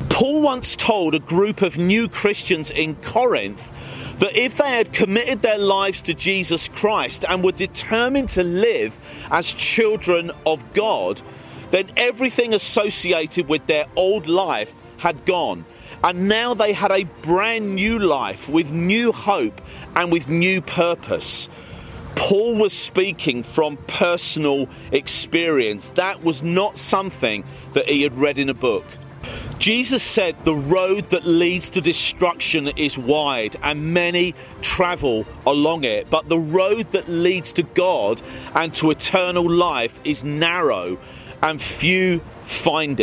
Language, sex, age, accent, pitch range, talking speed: English, male, 40-59, British, 150-200 Hz, 140 wpm